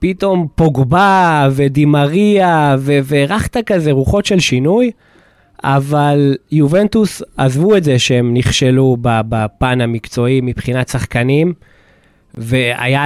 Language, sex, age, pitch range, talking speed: Hebrew, male, 20-39, 125-170 Hz, 90 wpm